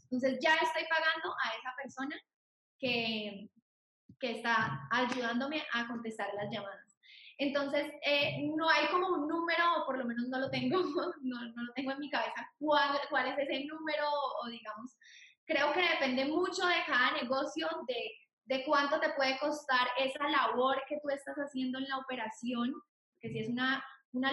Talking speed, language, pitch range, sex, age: 175 wpm, Spanish, 235-290 Hz, female, 10-29